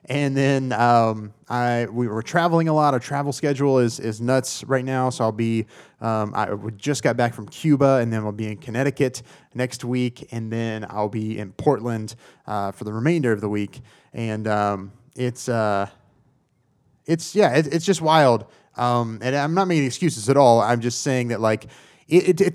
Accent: American